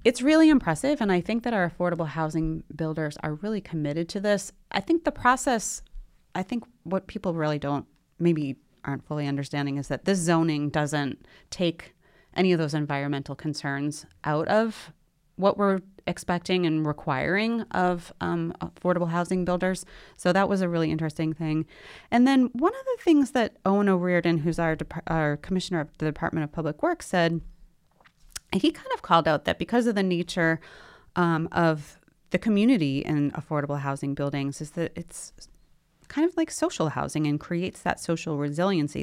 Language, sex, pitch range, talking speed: English, female, 150-190 Hz, 175 wpm